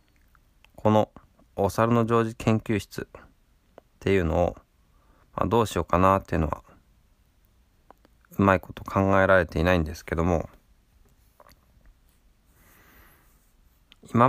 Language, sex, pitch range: Japanese, male, 80-105 Hz